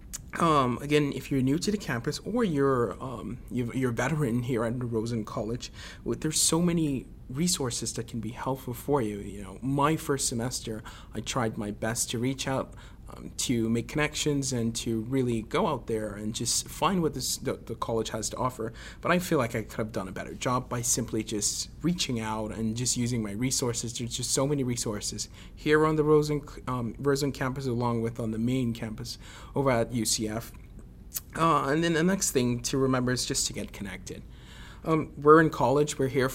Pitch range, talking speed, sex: 115-140 Hz, 205 wpm, male